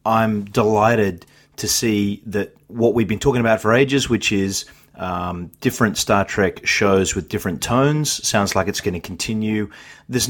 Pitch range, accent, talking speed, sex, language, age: 95-115 Hz, Australian, 170 wpm, male, English, 30-49